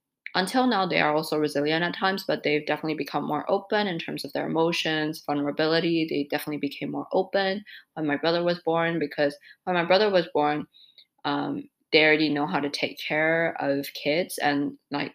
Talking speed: 190 wpm